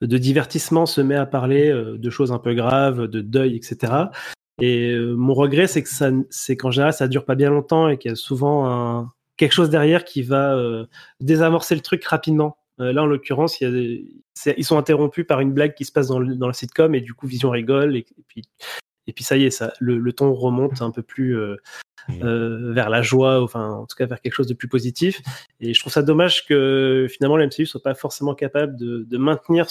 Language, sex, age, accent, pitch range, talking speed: French, male, 20-39, French, 125-150 Hz, 245 wpm